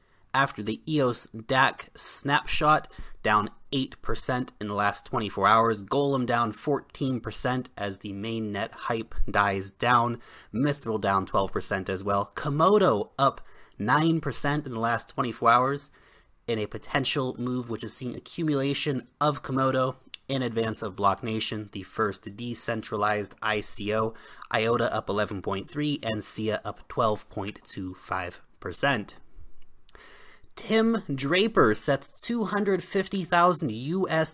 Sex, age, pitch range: male, 30-49, 105-145 Hz